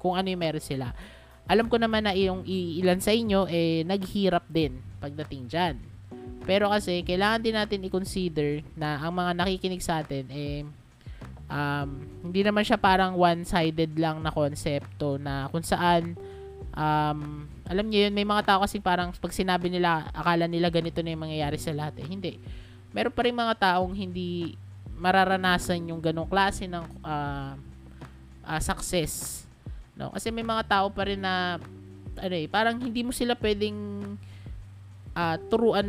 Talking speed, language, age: 155 wpm, English, 20-39